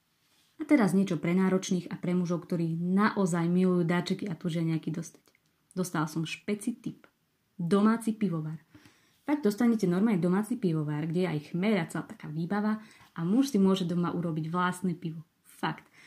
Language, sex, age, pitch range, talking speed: Slovak, female, 20-39, 170-200 Hz, 160 wpm